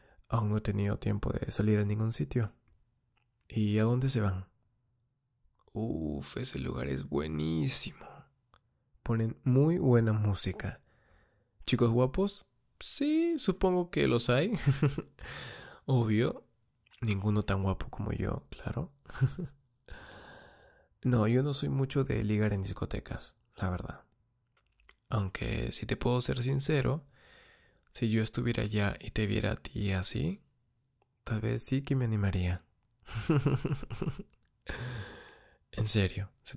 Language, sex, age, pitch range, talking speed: Spanish, male, 20-39, 105-130 Hz, 125 wpm